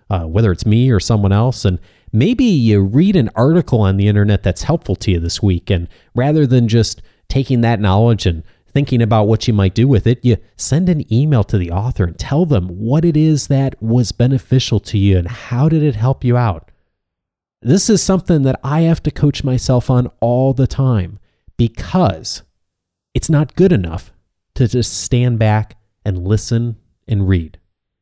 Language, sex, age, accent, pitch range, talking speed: English, male, 30-49, American, 100-135 Hz, 190 wpm